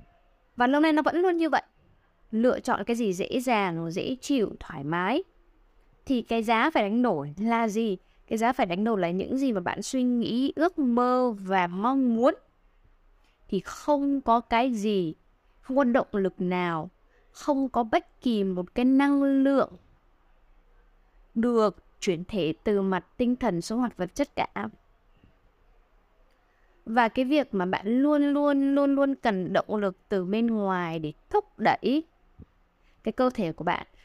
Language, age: Vietnamese, 10-29